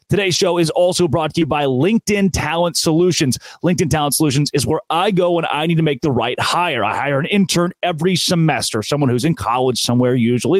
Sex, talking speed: male, 215 wpm